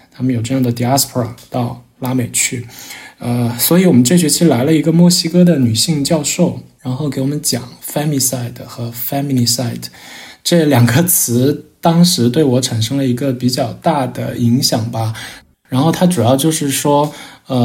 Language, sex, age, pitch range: Chinese, male, 20-39, 120-150 Hz